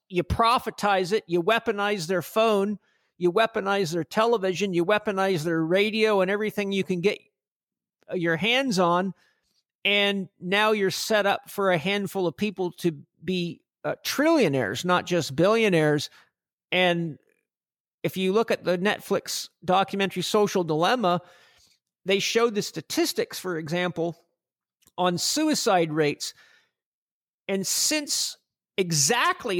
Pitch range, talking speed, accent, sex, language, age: 175-220 Hz, 125 wpm, American, male, English, 50-69